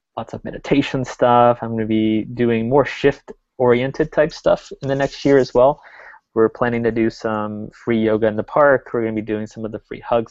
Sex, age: male, 20-39